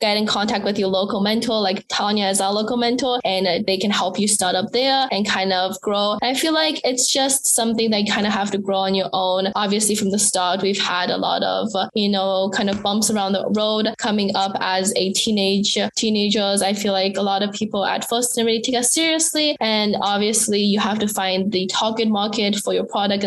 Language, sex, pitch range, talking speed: English, female, 195-225 Hz, 230 wpm